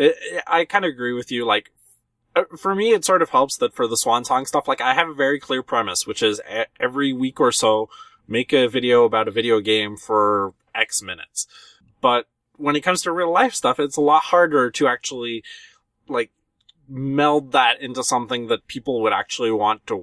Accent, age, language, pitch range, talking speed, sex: American, 20-39, English, 115-155 Hz, 200 wpm, male